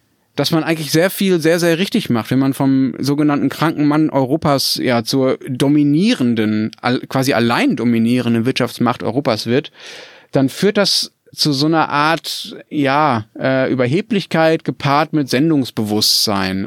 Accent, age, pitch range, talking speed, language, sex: German, 30-49, 120-155 Hz, 135 wpm, German, male